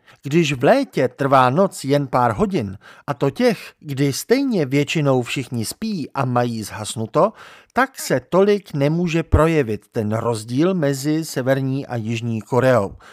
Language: Czech